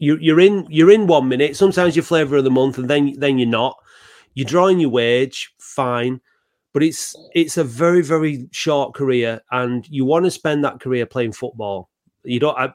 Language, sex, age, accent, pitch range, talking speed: English, male, 30-49, British, 120-145 Hz, 195 wpm